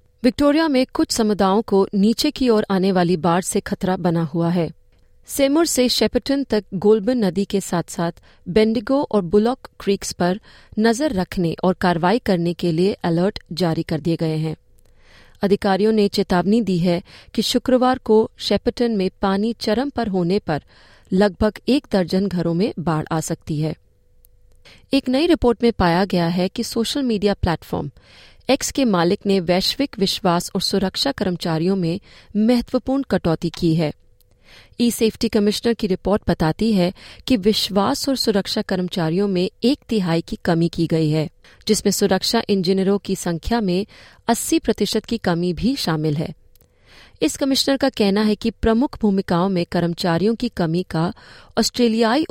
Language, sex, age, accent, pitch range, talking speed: Hindi, female, 30-49, native, 170-230 Hz, 160 wpm